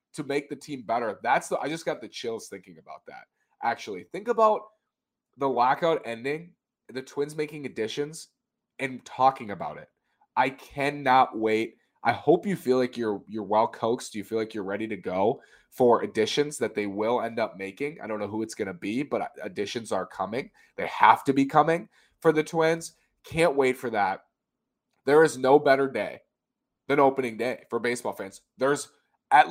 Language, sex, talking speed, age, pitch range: English, male, 185 wpm, 30-49, 115-160 Hz